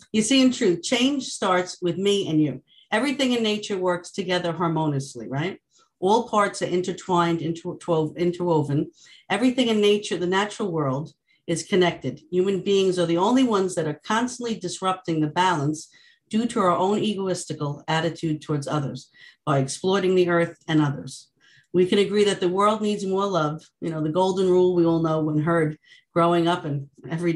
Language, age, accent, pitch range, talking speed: English, 50-69, American, 160-200 Hz, 175 wpm